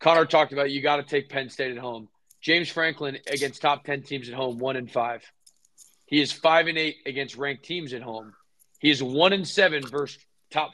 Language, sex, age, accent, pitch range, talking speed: English, male, 20-39, American, 125-150 Hz, 220 wpm